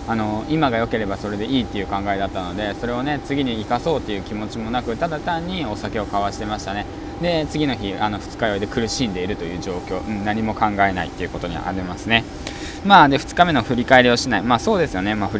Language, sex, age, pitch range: Japanese, male, 20-39, 100-125 Hz